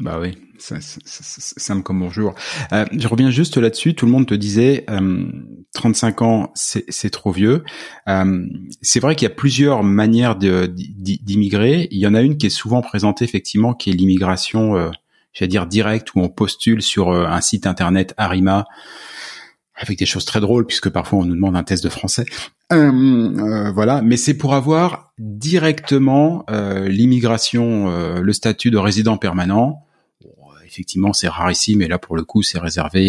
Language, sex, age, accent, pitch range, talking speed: French, male, 30-49, French, 95-120 Hz, 180 wpm